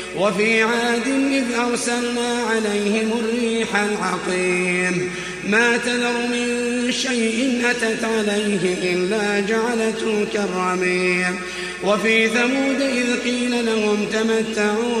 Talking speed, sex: 90 wpm, male